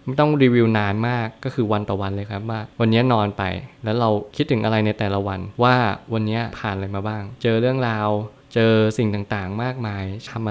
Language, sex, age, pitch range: Thai, male, 20-39, 105-125 Hz